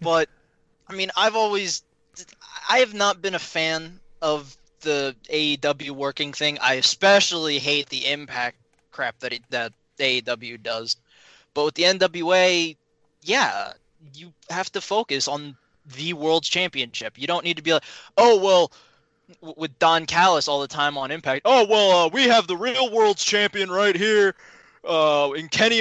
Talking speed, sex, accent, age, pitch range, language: 165 wpm, male, American, 20-39, 150-200 Hz, English